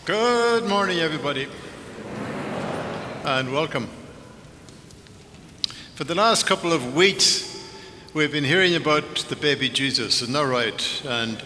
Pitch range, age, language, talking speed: 135-170 Hz, 60-79, English, 115 wpm